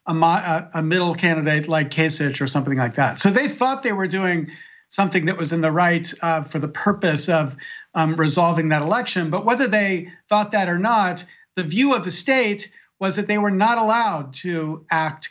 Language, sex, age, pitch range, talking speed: English, male, 50-69, 165-215 Hz, 190 wpm